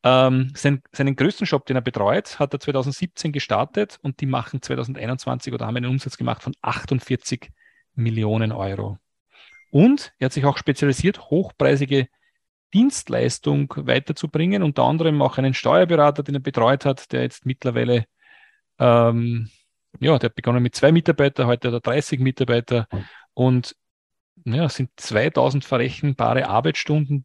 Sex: male